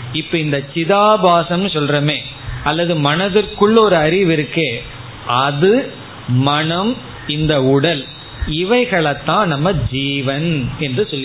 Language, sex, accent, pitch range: Tamil, male, native, 135-175 Hz